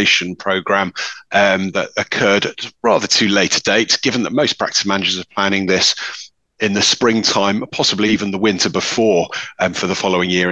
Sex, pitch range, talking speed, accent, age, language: male, 95-115 Hz, 170 wpm, British, 30-49, English